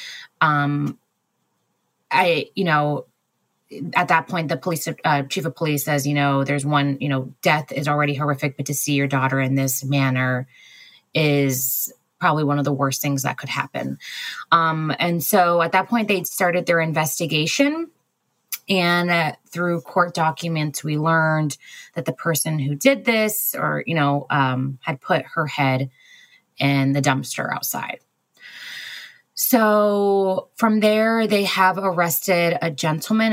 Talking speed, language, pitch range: 155 wpm, English, 140-175 Hz